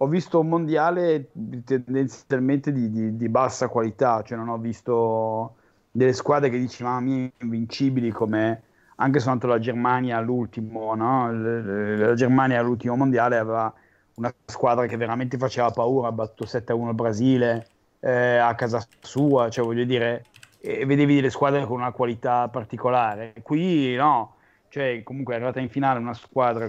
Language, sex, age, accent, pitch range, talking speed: Italian, male, 30-49, native, 115-130 Hz, 145 wpm